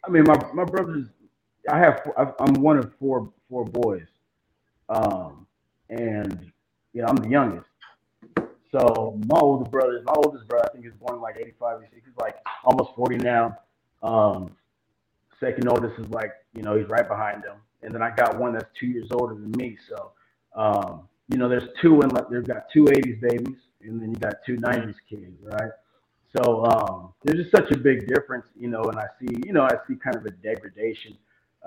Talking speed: 195 wpm